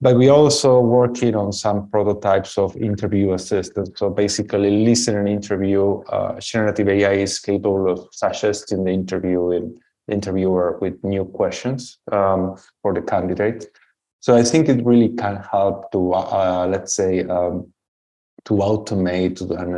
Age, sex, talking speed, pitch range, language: 20-39, male, 150 wpm, 90-110 Hz, English